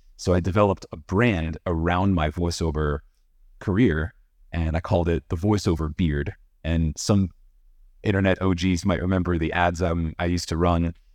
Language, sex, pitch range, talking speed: English, male, 80-100 Hz, 155 wpm